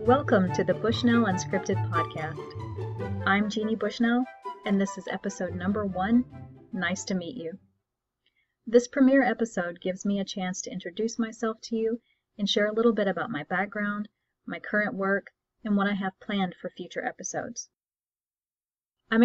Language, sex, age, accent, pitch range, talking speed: English, female, 30-49, American, 180-225 Hz, 160 wpm